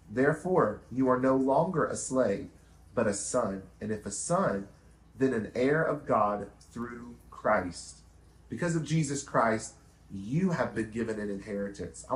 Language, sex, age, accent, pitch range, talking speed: English, male, 40-59, American, 90-135 Hz, 160 wpm